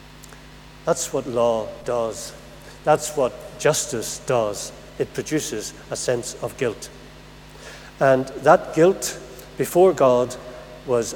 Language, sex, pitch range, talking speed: English, male, 120-150 Hz, 110 wpm